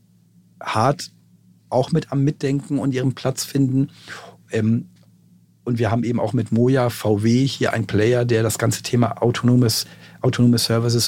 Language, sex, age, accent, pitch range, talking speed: German, male, 50-69, German, 110-135 Hz, 145 wpm